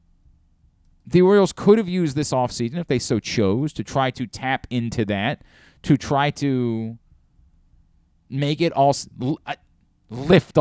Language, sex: English, male